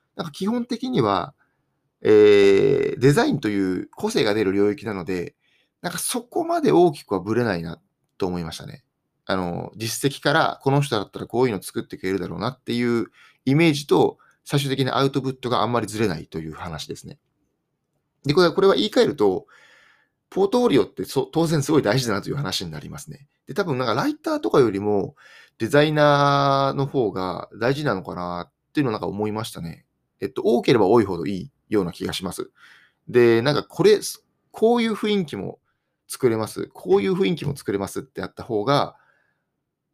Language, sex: Japanese, male